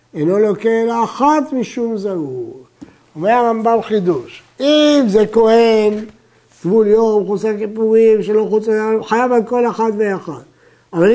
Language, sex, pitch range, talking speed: Hebrew, male, 170-220 Hz, 130 wpm